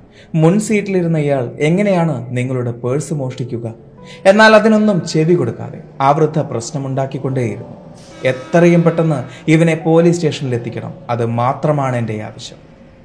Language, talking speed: Malayalam, 110 wpm